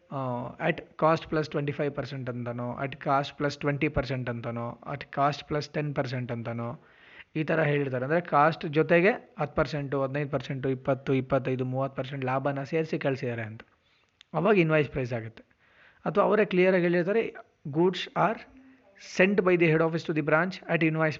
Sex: male